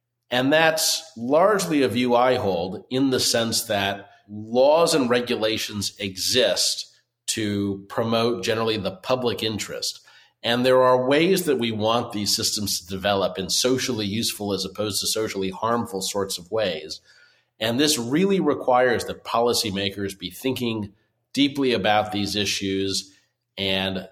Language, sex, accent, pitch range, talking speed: English, male, American, 100-125 Hz, 140 wpm